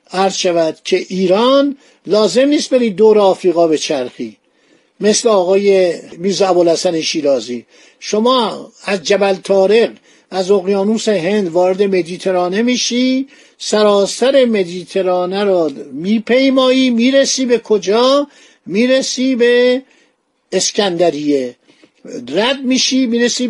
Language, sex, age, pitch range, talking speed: Persian, male, 60-79, 190-245 Hz, 95 wpm